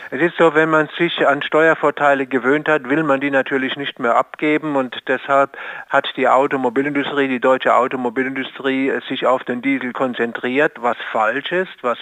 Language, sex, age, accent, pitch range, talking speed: German, male, 50-69, German, 130-145 Hz, 170 wpm